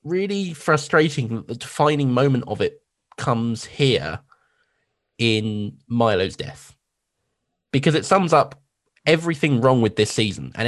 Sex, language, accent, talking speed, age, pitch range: male, English, British, 130 wpm, 20-39, 105-140 Hz